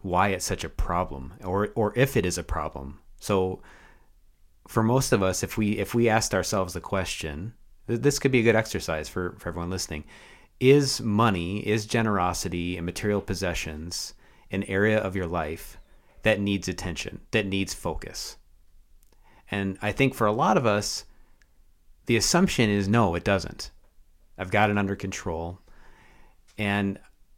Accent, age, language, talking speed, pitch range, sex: American, 30-49, English, 160 wpm, 85-110 Hz, male